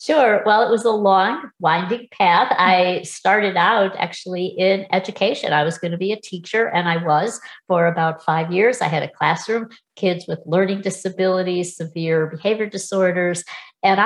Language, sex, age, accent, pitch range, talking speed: English, female, 60-79, American, 165-220 Hz, 170 wpm